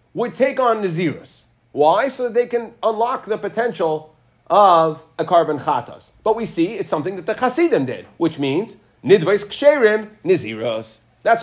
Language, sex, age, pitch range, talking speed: English, male, 30-49, 155-230 Hz, 165 wpm